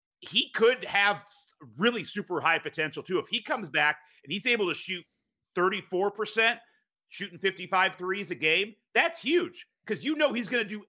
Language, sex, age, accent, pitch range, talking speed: English, male, 40-59, American, 150-205 Hz, 175 wpm